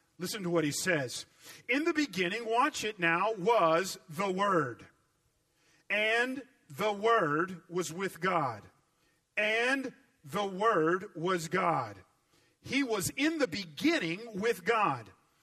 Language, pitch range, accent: English, 165-235 Hz, American